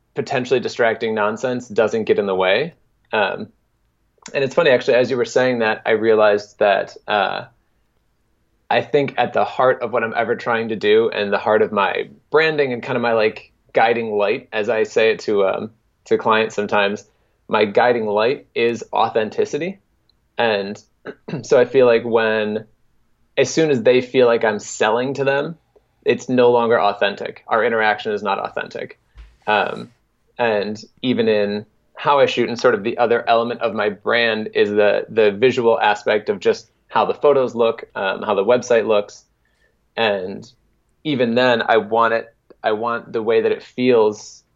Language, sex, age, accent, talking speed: English, male, 20-39, American, 175 wpm